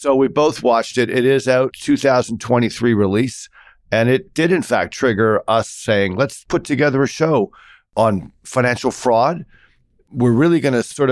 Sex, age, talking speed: male, 50-69, 165 wpm